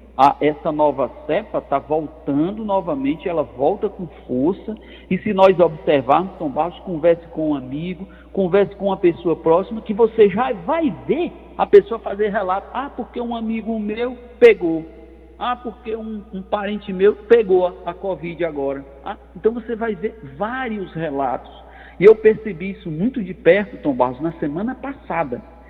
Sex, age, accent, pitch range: male, 50-69, Brazilian, 155-230 Hz